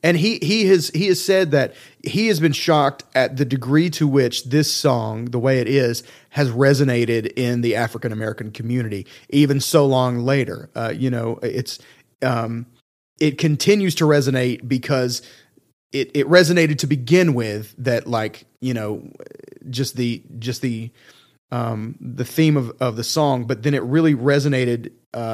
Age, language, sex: 30-49, English, male